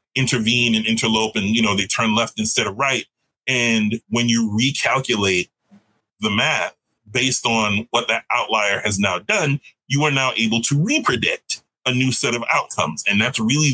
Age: 30-49